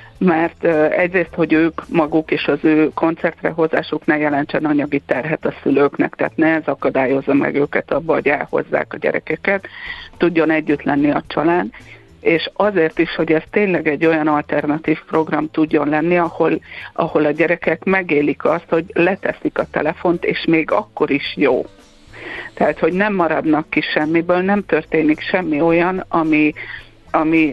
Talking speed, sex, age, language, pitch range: 150 wpm, female, 50-69, Hungarian, 150-170 Hz